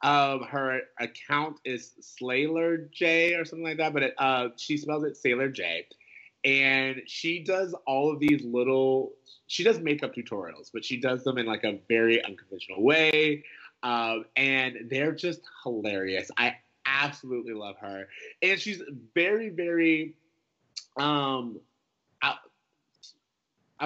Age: 30-49